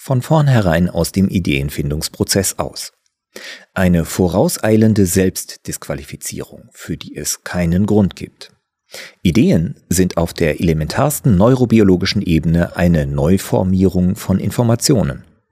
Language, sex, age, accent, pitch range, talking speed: German, male, 40-59, German, 85-110 Hz, 100 wpm